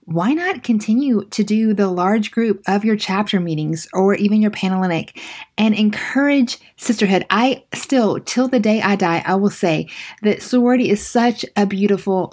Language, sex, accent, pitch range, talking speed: English, female, American, 185-230 Hz, 170 wpm